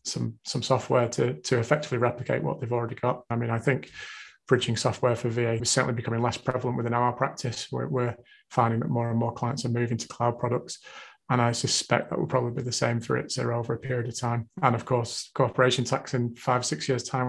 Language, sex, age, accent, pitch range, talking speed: English, male, 30-49, British, 125-140 Hz, 235 wpm